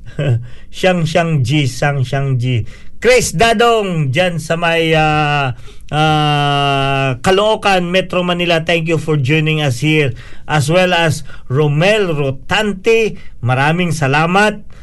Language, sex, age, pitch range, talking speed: Filipino, male, 50-69, 130-165 Hz, 110 wpm